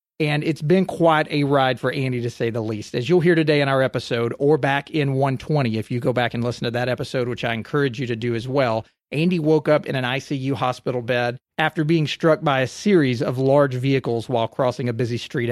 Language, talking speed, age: English, 240 wpm, 40-59